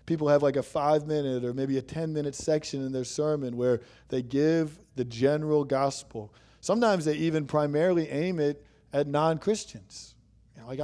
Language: English